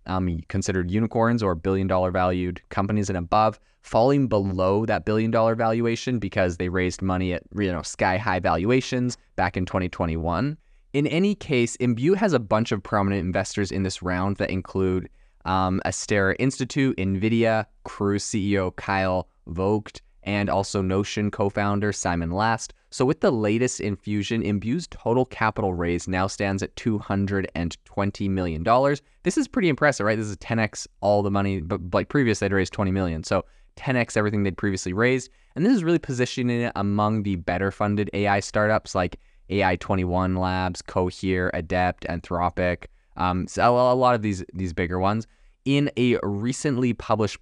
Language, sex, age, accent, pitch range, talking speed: English, male, 20-39, American, 95-115 Hz, 155 wpm